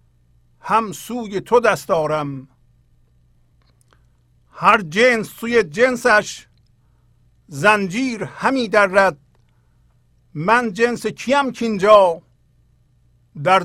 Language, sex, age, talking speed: English, male, 50-69, 80 wpm